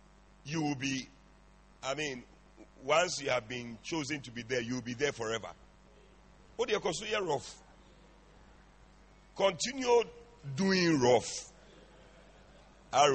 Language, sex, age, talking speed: English, male, 50-69, 125 wpm